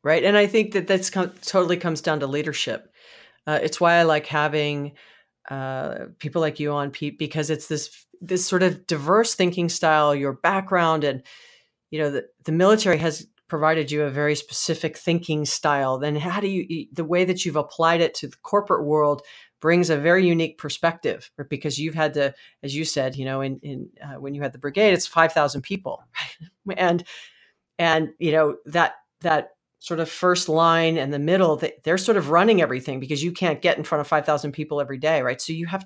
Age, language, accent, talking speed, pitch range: 40-59, English, American, 200 wpm, 145-170 Hz